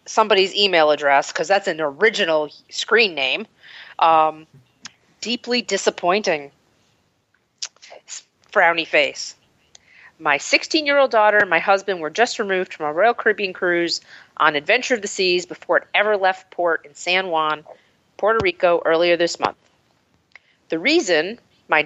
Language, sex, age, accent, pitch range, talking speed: English, female, 40-59, American, 160-210 Hz, 135 wpm